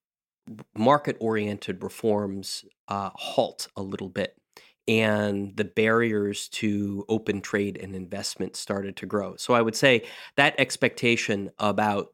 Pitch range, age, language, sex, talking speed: 100-110 Hz, 30-49, English, male, 125 wpm